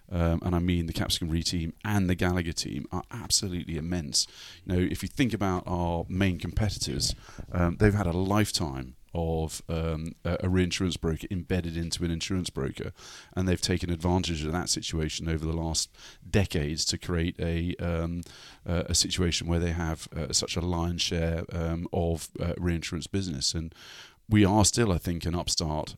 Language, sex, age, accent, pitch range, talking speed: English, male, 30-49, British, 80-90 Hz, 185 wpm